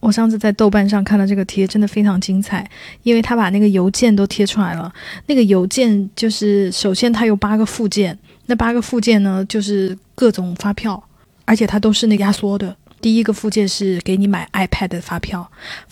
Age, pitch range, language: 20-39, 190-220 Hz, Chinese